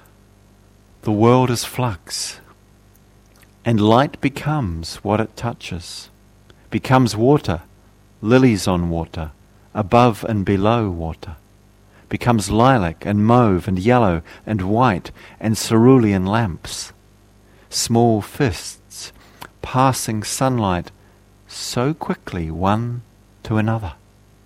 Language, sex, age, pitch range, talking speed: English, male, 50-69, 100-115 Hz, 95 wpm